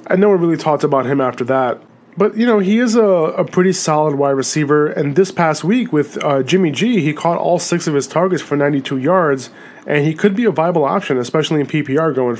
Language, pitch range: English, 140-165 Hz